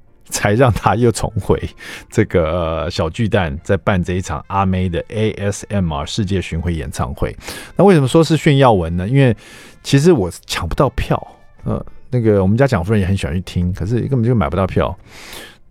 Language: Chinese